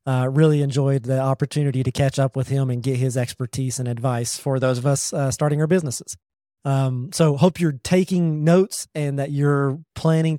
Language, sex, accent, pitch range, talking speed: English, male, American, 130-150 Hz, 195 wpm